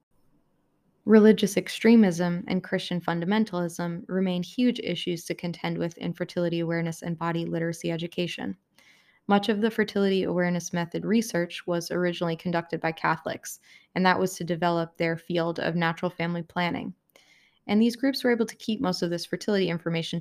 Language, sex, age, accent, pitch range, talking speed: English, female, 20-39, American, 170-200 Hz, 155 wpm